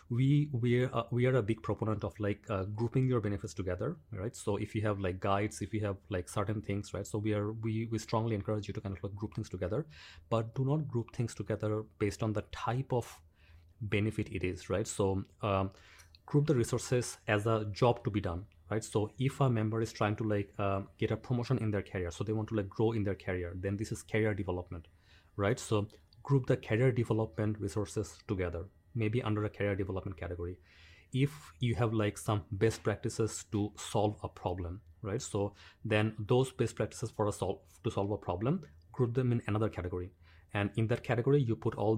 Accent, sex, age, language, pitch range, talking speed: Indian, male, 30-49, English, 100-115 Hz, 215 wpm